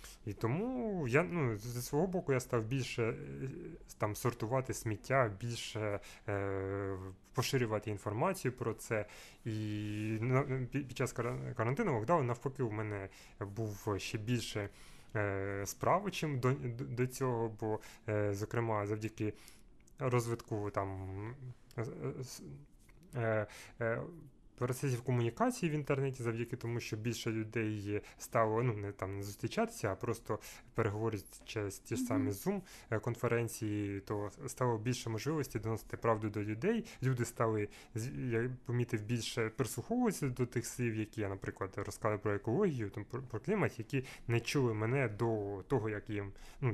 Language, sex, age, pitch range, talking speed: Ukrainian, male, 20-39, 105-130 Hz, 130 wpm